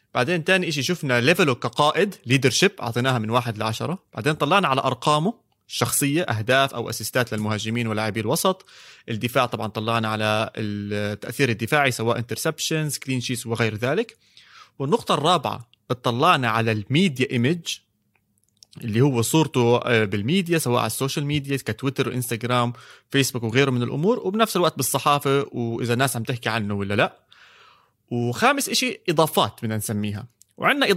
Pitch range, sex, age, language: 120-180 Hz, male, 30-49, Arabic